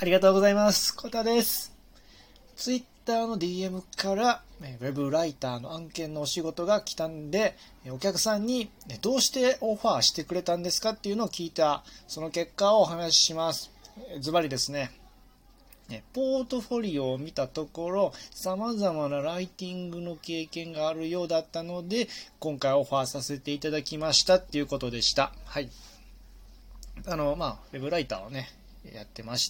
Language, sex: Japanese, male